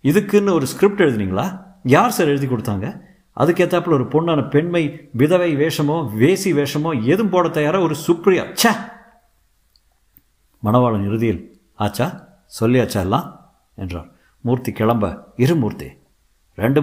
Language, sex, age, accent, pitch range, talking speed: Tamil, male, 50-69, native, 105-145 Hz, 115 wpm